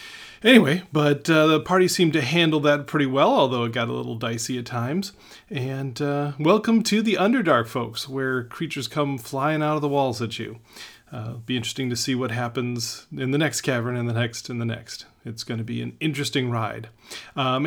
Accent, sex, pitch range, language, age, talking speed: American, male, 120-150 Hz, English, 30-49, 210 wpm